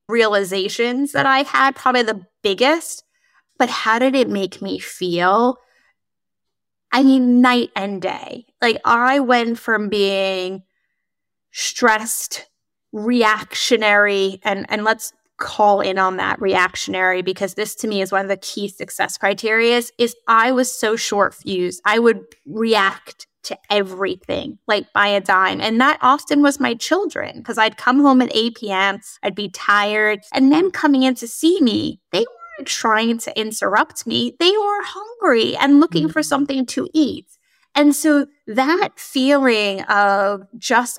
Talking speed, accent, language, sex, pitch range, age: 150 wpm, American, English, female, 205-270 Hz, 10-29